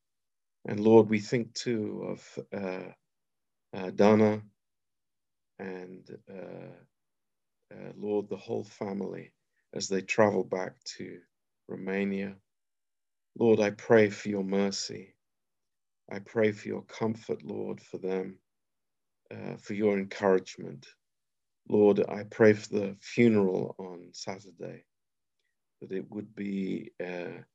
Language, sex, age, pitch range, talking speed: Romanian, male, 50-69, 95-105 Hz, 115 wpm